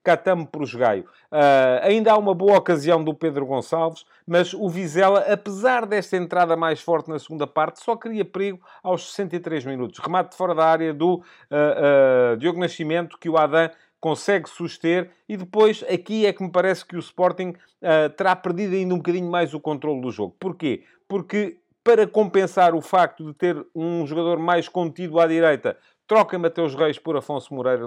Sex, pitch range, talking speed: male, 150-185 Hz, 185 wpm